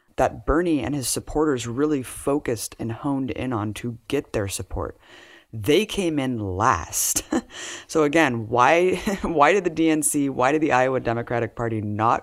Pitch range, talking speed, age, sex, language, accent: 110-135 Hz, 160 wpm, 20-39, female, English, American